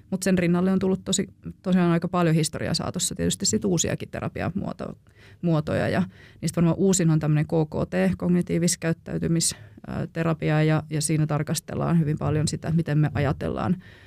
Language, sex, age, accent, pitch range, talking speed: Finnish, female, 30-49, native, 150-175 Hz, 140 wpm